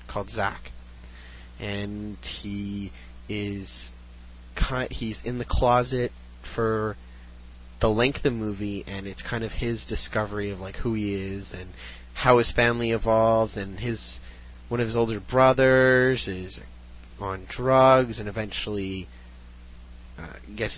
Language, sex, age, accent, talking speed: English, male, 30-49, American, 125 wpm